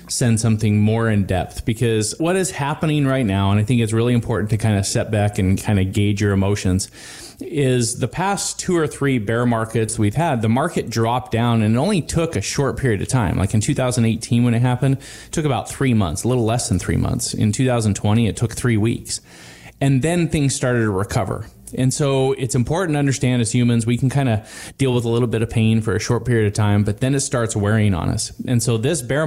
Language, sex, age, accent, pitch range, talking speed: English, male, 20-39, American, 105-130 Hz, 240 wpm